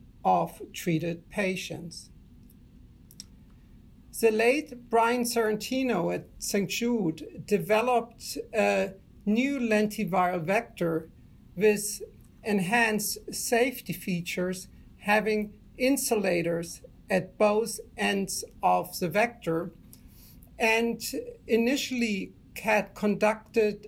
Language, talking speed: English, 80 wpm